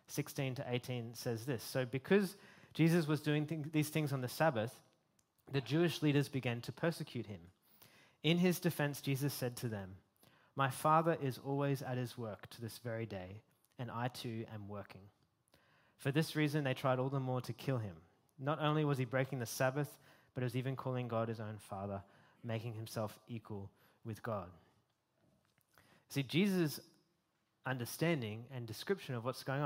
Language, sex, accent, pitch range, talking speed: English, male, Australian, 115-140 Hz, 170 wpm